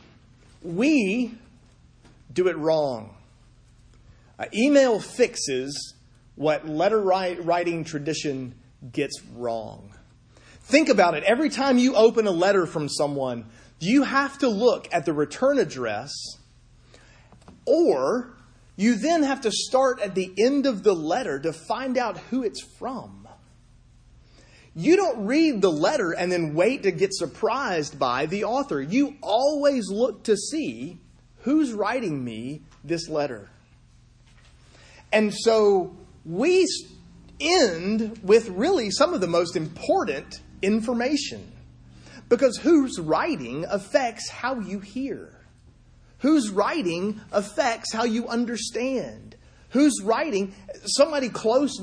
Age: 30-49